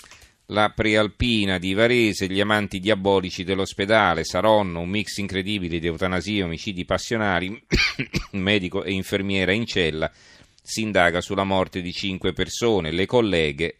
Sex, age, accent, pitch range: male, 40-59, native, 85-105 Hz